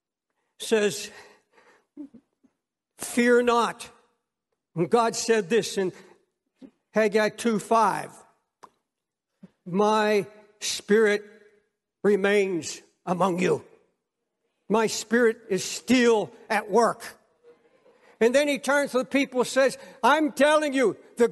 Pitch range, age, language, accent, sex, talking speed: 225-290 Hz, 60-79, English, American, male, 100 wpm